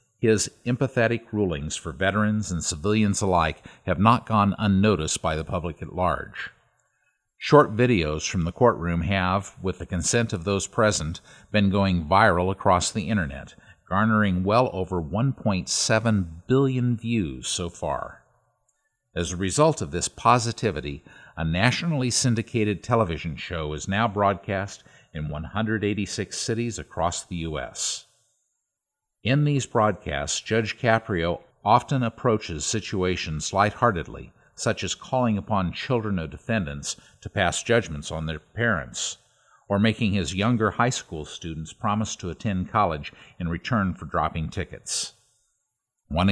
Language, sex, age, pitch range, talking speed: English, male, 50-69, 85-115 Hz, 130 wpm